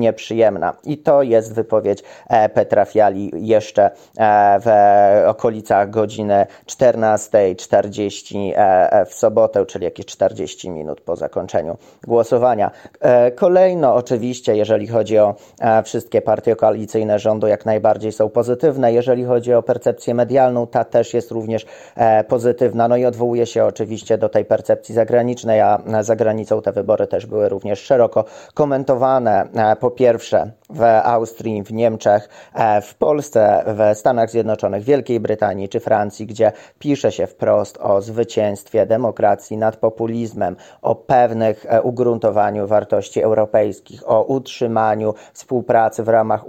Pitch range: 110-120 Hz